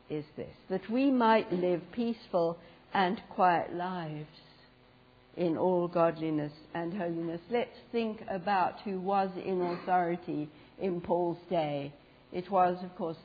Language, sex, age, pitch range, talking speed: English, female, 60-79, 160-200 Hz, 130 wpm